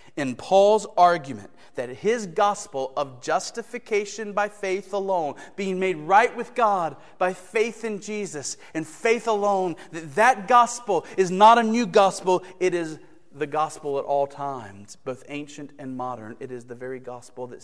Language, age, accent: English, 40-59, American